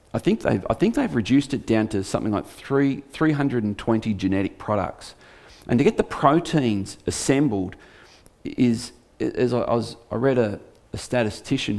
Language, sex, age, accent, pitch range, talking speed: English, male, 40-59, Australian, 105-140 Hz, 175 wpm